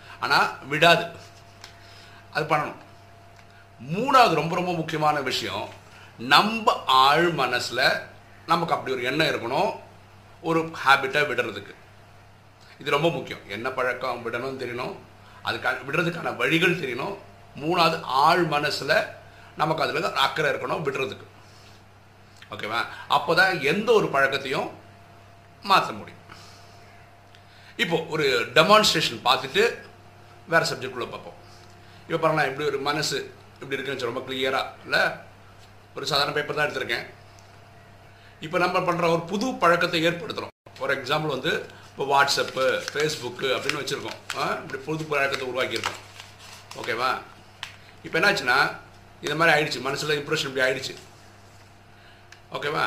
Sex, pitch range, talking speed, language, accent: male, 100-165 Hz, 115 wpm, Tamil, native